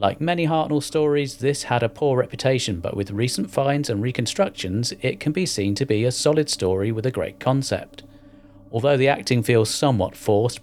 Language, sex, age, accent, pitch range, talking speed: English, male, 40-59, British, 95-125 Hz, 190 wpm